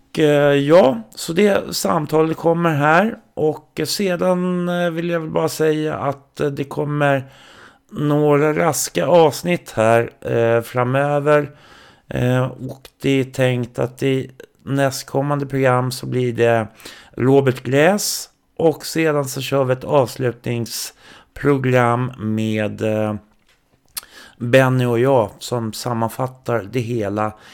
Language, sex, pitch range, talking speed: Swedish, male, 115-150 Hz, 105 wpm